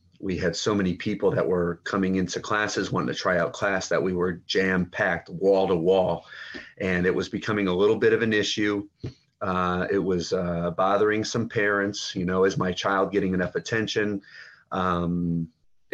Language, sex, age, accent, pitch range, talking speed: English, male, 30-49, American, 90-105 Hz, 185 wpm